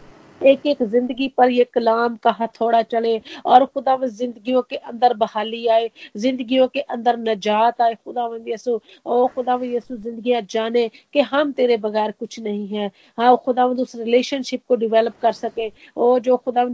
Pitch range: 225-250 Hz